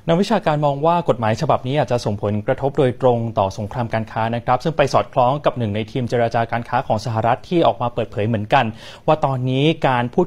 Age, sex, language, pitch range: 20-39, male, Thai, 120-165 Hz